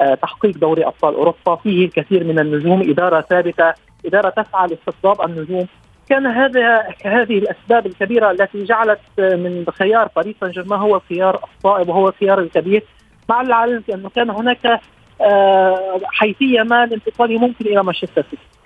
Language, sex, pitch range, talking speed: Arabic, male, 180-230 Hz, 140 wpm